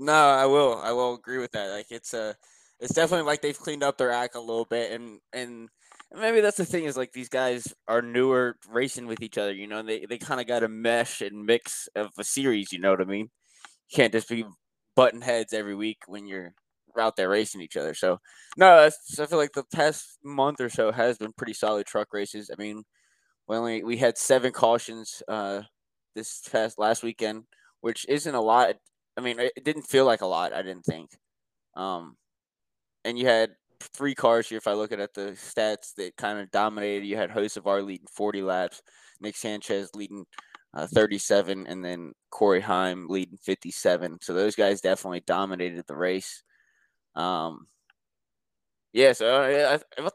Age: 10-29